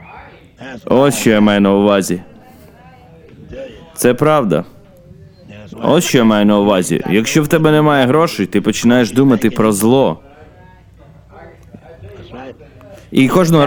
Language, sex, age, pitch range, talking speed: Ukrainian, male, 30-49, 105-135 Hz, 115 wpm